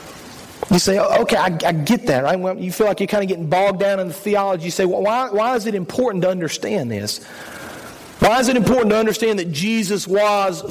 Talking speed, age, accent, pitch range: 225 wpm, 40-59, American, 185-230 Hz